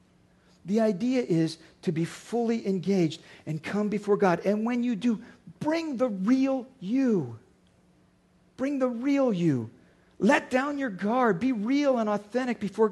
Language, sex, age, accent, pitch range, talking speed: English, male, 50-69, American, 195-270 Hz, 150 wpm